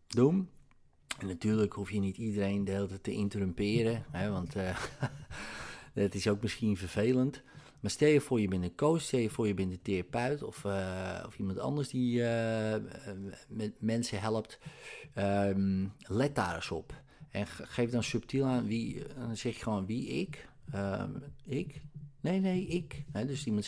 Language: Dutch